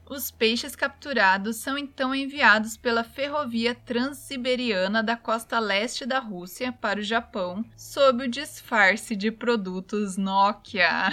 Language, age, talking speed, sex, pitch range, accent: Portuguese, 20-39, 125 wpm, female, 215-260 Hz, Brazilian